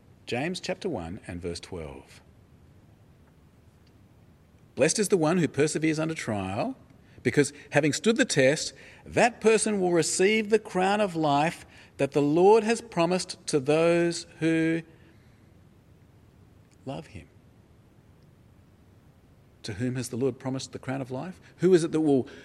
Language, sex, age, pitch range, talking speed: English, male, 40-59, 110-170 Hz, 140 wpm